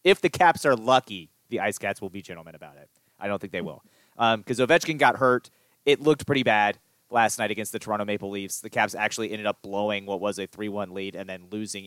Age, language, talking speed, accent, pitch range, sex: 30-49, English, 245 wpm, American, 105-140 Hz, male